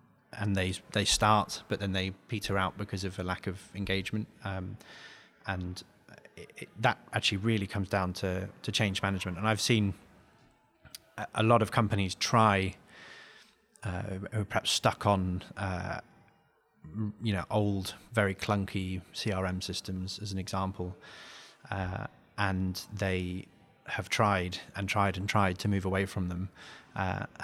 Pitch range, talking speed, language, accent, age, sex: 95-105 Hz, 145 wpm, English, British, 20-39, male